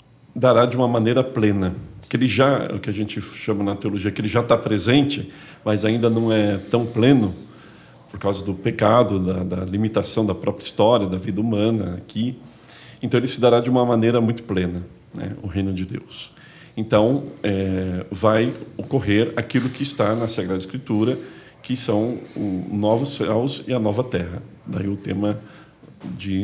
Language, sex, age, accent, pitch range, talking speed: Portuguese, male, 50-69, Brazilian, 100-120 Hz, 175 wpm